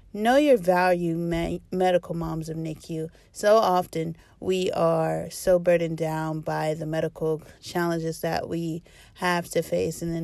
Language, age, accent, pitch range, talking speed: English, 30-49, American, 160-180 Hz, 145 wpm